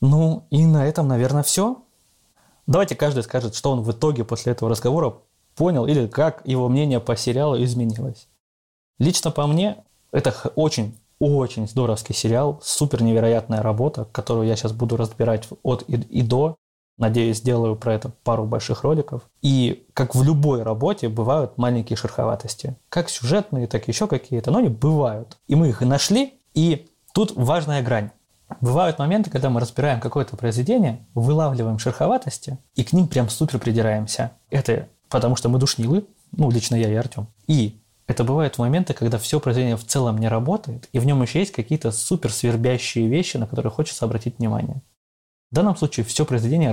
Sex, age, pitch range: male, 20-39, 115-145 Hz